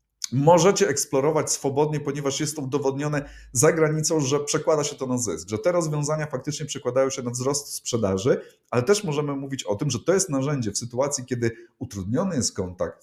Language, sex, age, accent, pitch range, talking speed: Polish, male, 30-49, native, 110-140 Hz, 185 wpm